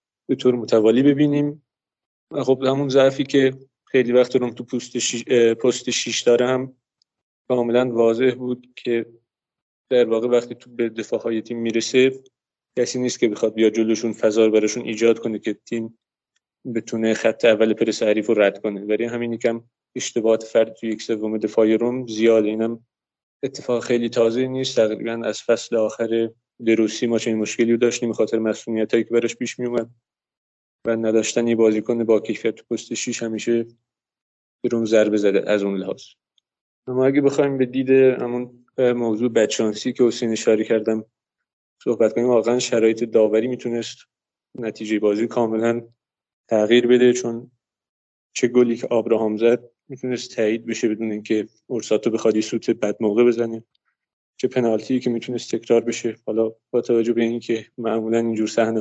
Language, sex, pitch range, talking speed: Persian, male, 110-125 Hz, 150 wpm